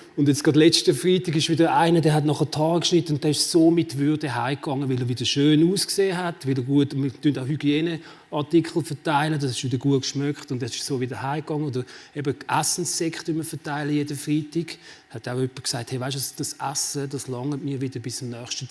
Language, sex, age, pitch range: German, male, 30-49, 135-160 Hz